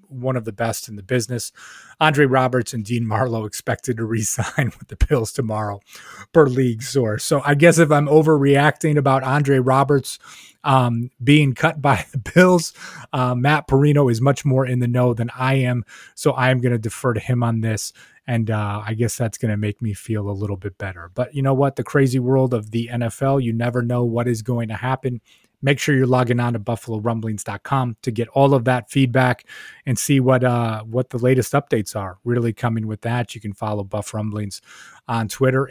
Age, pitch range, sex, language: 30-49, 115-140 Hz, male, English